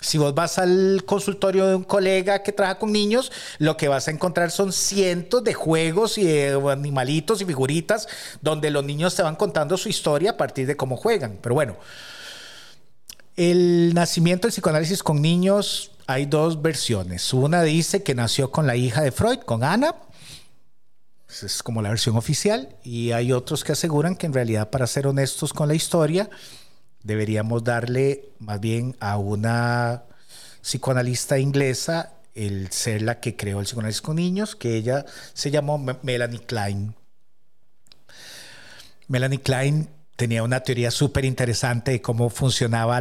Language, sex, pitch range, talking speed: Spanish, male, 125-170 Hz, 155 wpm